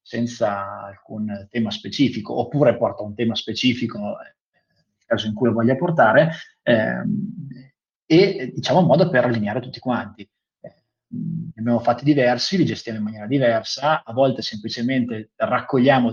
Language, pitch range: Italian, 115-145 Hz